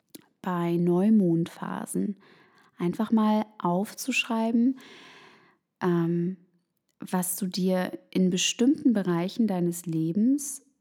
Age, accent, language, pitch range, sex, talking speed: 20-39, German, German, 170-200 Hz, female, 80 wpm